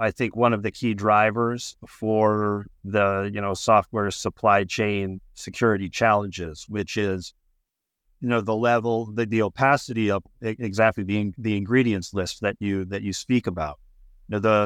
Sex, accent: male, American